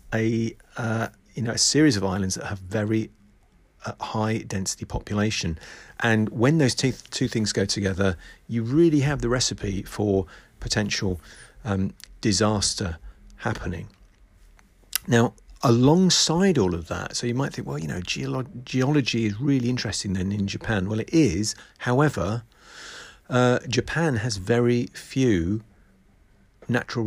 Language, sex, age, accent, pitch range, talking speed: English, male, 40-59, British, 95-120 Hz, 140 wpm